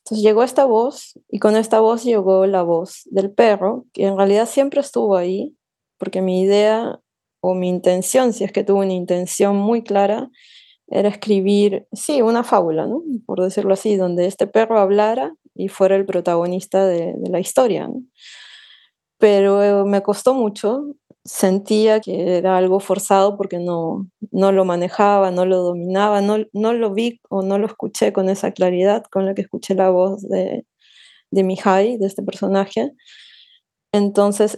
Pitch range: 185-220 Hz